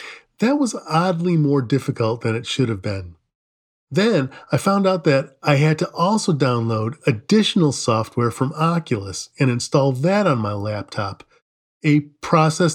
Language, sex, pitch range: English, male, 120-165 Hz